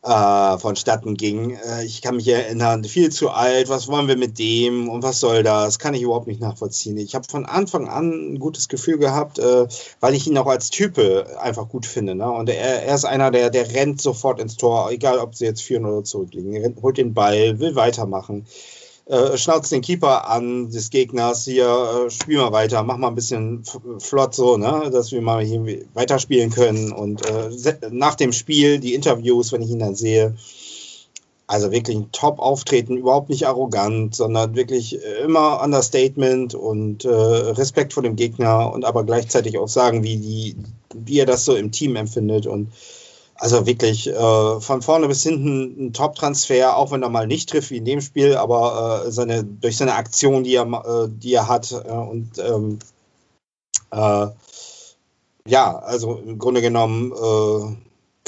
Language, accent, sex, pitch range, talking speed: German, German, male, 115-135 Hz, 180 wpm